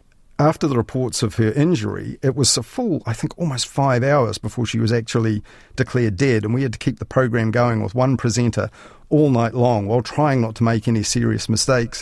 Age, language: 40-59, English